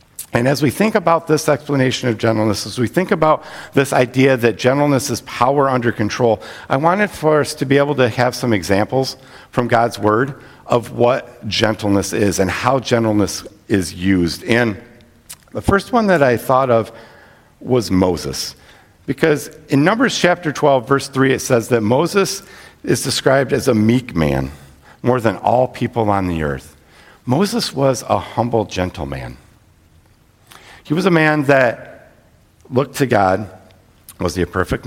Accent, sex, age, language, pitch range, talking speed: American, male, 50-69, English, 95-130 Hz, 165 wpm